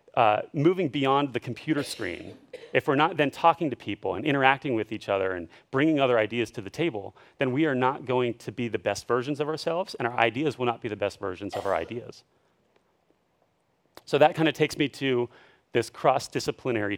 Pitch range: 120-155 Hz